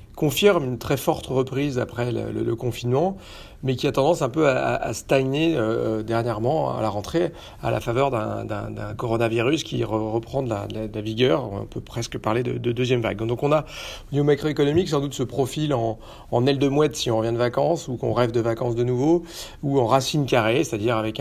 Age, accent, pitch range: 40-59, French, 115-135 Hz